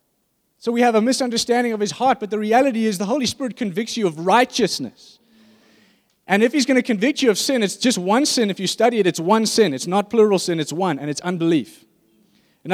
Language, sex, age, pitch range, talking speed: English, male, 20-39, 175-230 Hz, 230 wpm